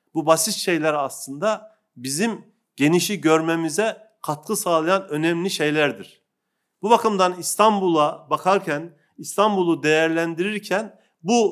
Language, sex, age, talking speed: Turkish, male, 40-59, 95 wpm